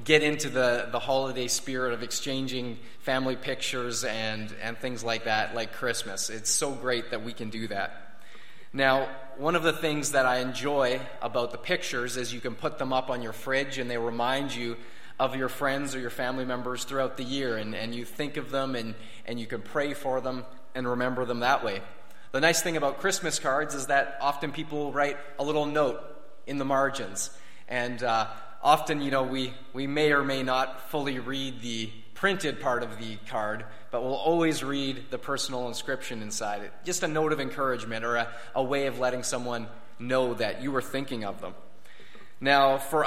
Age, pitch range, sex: 30-49, 120-145 Hz, male